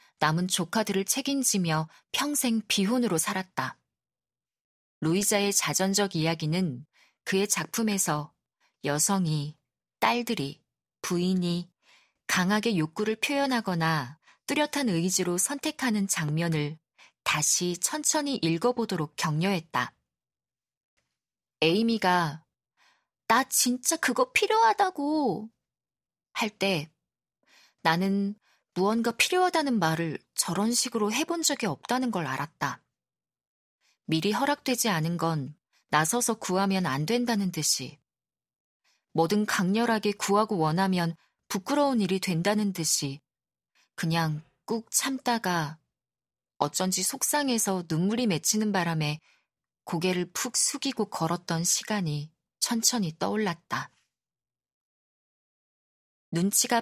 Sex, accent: female, native